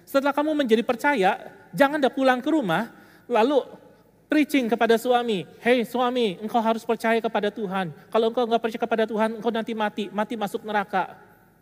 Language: Indonesian